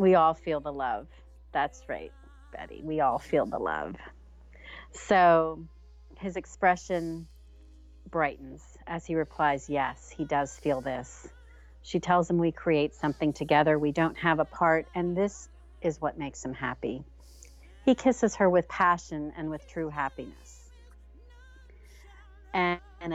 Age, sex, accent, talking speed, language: 40-59, female, American, 140 wpm, English